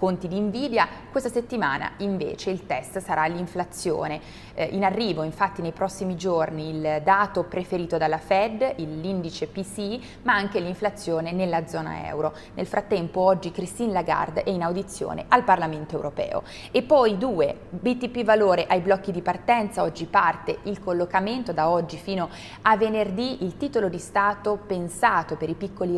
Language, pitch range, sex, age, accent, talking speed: Italian, 170-205 Hz, female, 20-39, native, 155 wpm